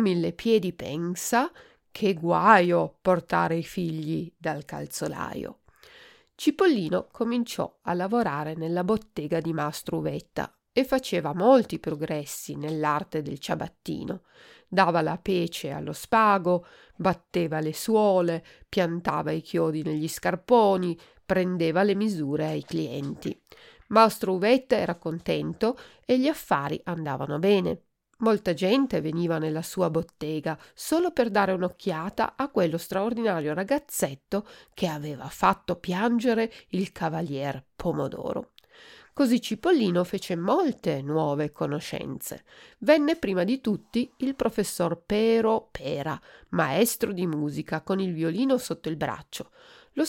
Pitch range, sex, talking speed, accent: 165-230 Hz, female, 115 wpm, native